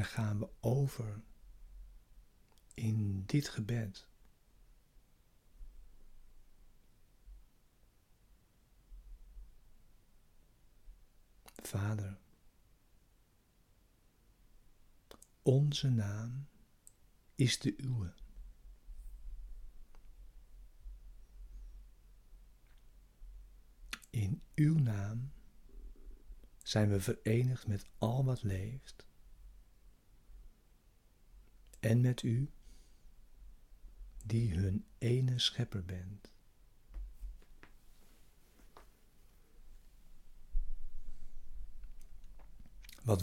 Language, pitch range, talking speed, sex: Dutch, 100-120 Hz, 45 wpm, male